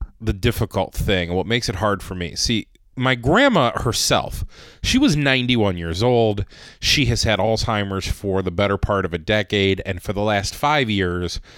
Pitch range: 90-135 Hz